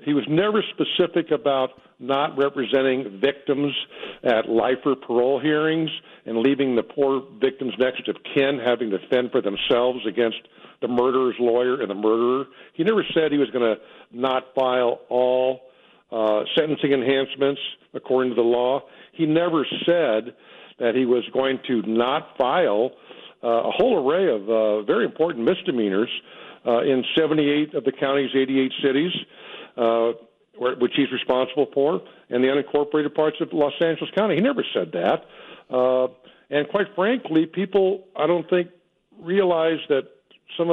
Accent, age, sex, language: American, 50-69, male, English